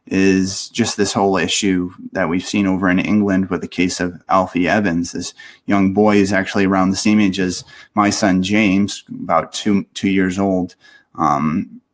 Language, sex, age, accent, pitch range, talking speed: English, male, 30-49, American, 95-110 Hz, 180 wpm